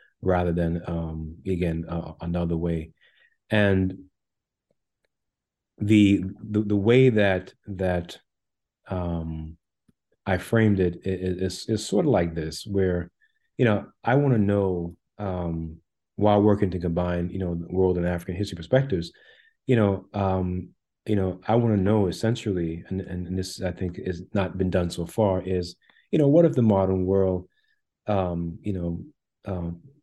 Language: English